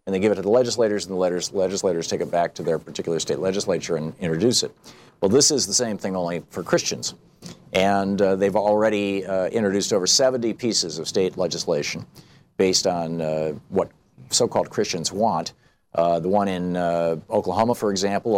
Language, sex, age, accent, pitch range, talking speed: English, male, 50-69, American, 90-105 Hz, 185 wpm